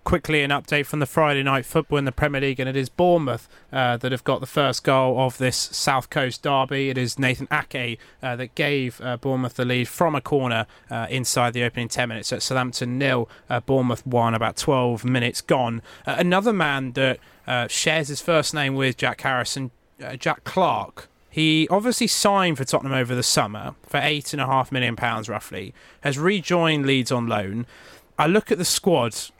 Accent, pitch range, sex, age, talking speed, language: British, 125-150 Hz, male, 30-49, 195 wpm, English